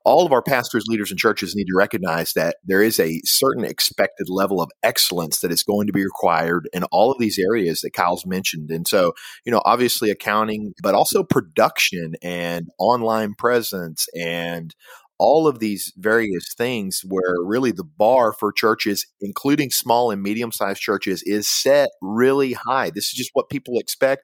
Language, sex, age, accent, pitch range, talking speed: English, male, 40-59, American, 95-120 Hz, 180 wpm